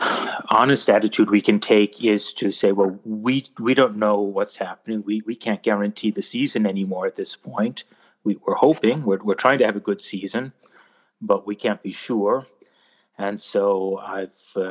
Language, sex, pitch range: English, male, 100-110 Hz